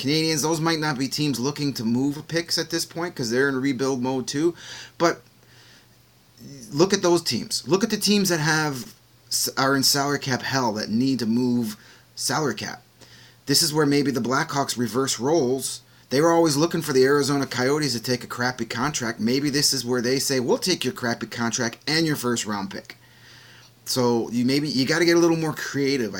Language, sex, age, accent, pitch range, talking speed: English, male, 30-49, American, 120-150 Hz, 205 wpm